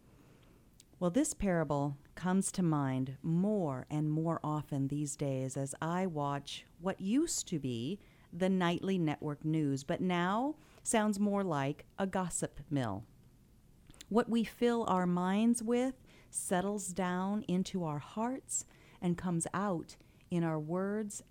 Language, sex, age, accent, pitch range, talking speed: English, female, 40-59, American, 145-200 Hz, 135 wpm